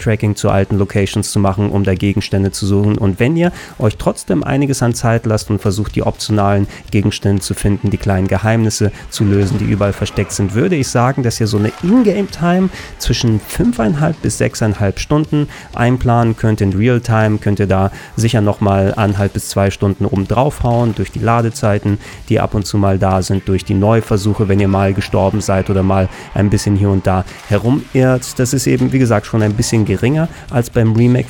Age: 30-49